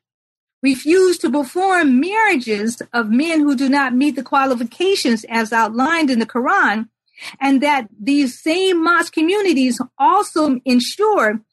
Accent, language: American, English